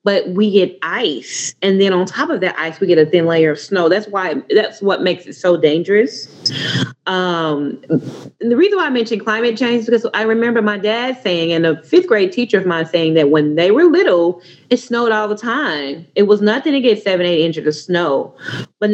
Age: 30-49